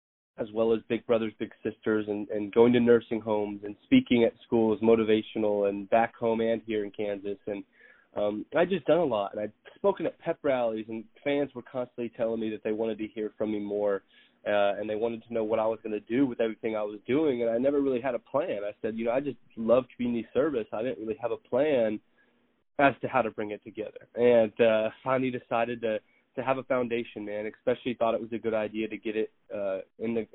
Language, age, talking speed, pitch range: English, 20-39, 240 wpm, 105-120 Hz